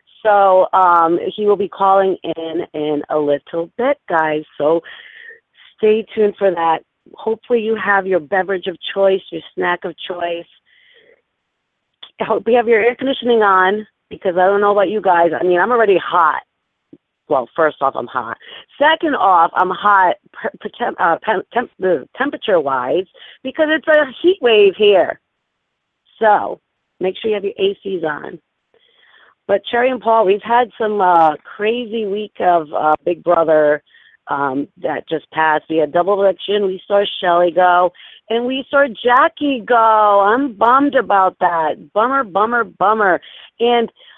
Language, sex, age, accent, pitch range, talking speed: English, female, 40-59, American, 175-240 Hz, 150 wpm